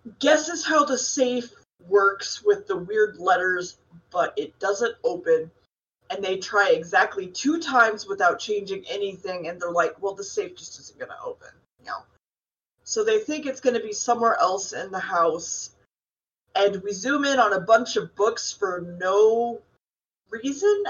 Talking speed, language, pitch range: 165 wpm, English, 205-320 Hz